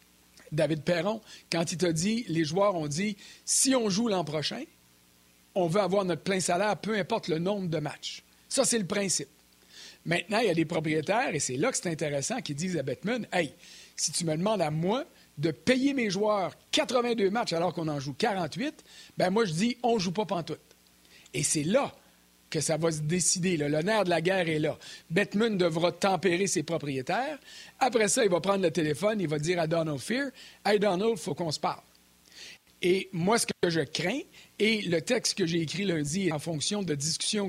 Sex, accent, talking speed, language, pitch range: male, Canadian, 215 wpm, French, 155-205 Hz